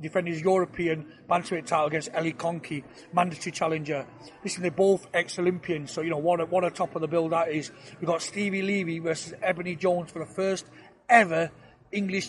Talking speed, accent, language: 190 wpm, British, English